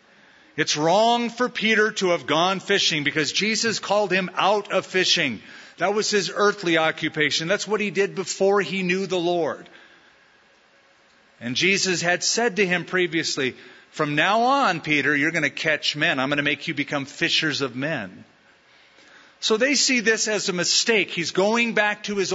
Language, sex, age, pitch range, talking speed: English, male, 40-59, 160-210 Hz, 175 wpm